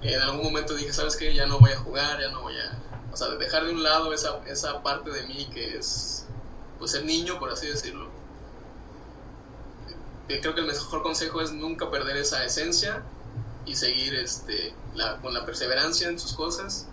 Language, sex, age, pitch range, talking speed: Spanish, male, 20-39, 120-155 Hz, 190 wpm